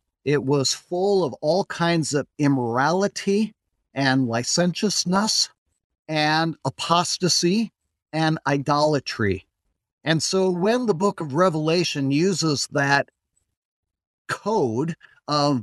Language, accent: English, American